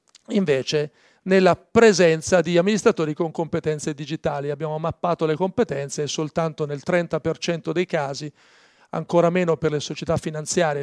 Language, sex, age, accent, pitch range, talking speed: Italian, male, 40-59, native, 150-205 Hz, 135 wpm